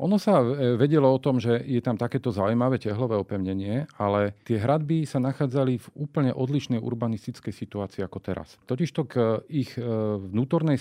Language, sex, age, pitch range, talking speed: Slovak, male, 40-59, 100-125 Hz, 155 wpm